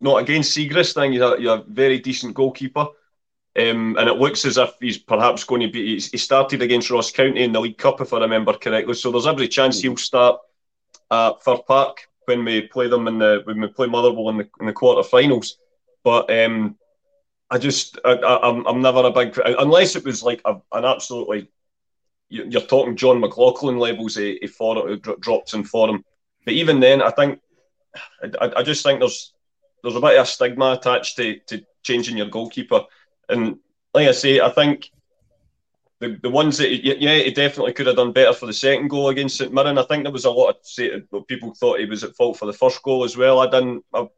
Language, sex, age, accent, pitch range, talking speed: English, male, 30-49, British, 120-155 Hz, 220 wpm